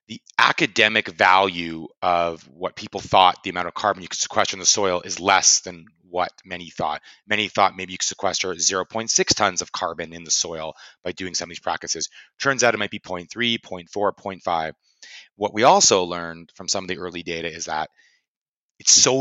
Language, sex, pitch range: English, male, 85-100 Hz